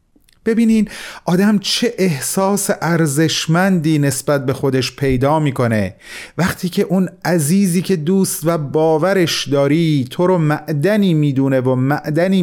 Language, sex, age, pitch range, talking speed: Persian, male, 40-59, 130-175 Hz, 125 wpm